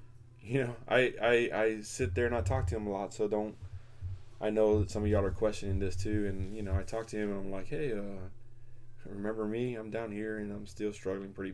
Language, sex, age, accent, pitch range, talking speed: English, male, 20-39, American, 90-115 Hz, 250 wpm